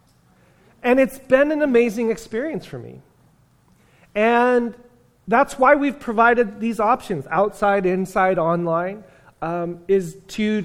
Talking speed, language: 120 wpm, English